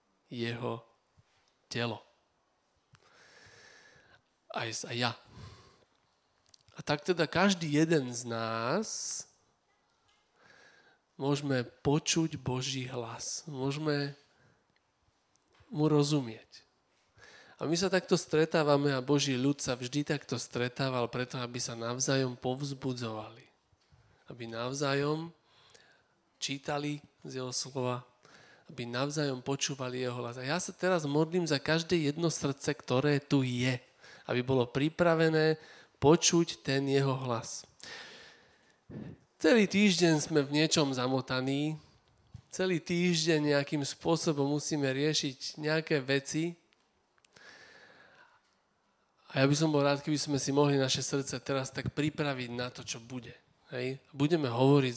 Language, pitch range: Slovak, 125-155 Hz